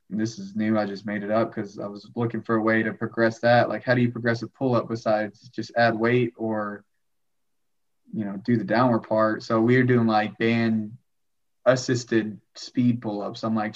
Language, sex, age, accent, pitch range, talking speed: English, male, 20-39, American, 110-125 Hz, 200 wpm